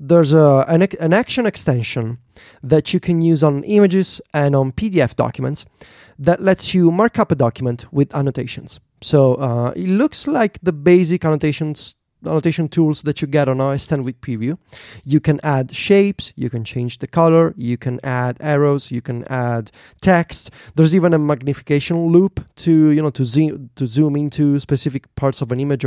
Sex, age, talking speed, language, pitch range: male, 30-49, 180 wpm, English, 135-175 Hz